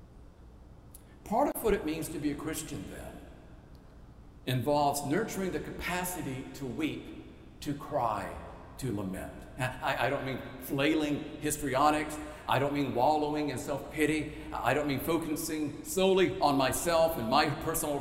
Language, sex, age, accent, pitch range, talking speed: English, male, 50-69, American, 140-180 Hz, 135 wpm